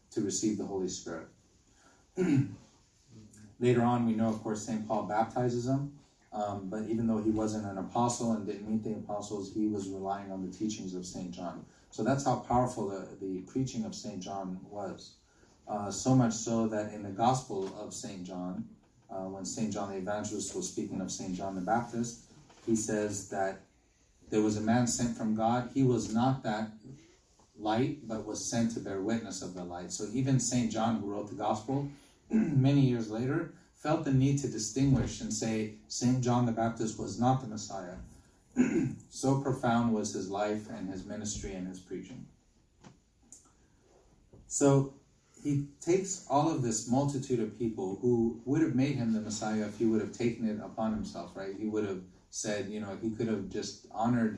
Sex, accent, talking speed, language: male, American, 185 wpm, English